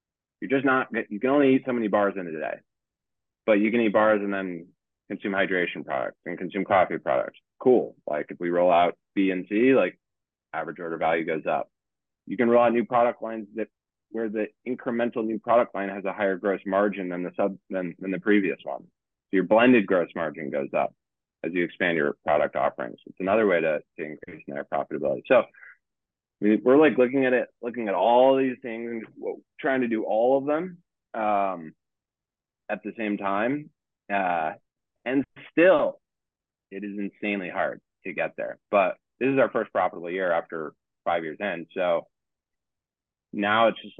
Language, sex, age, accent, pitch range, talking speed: English, male, 30-49, American, 95-120 Hz, 185 wpm